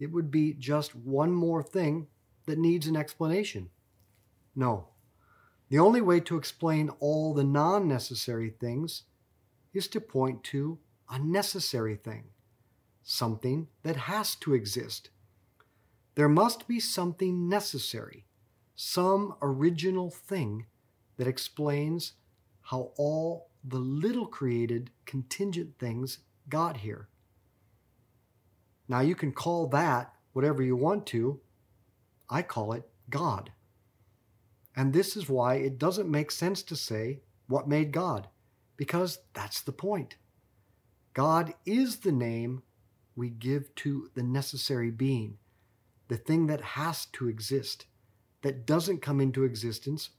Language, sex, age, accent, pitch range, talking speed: English, male, 40-59, American, 115-160 Hz, 125 wpm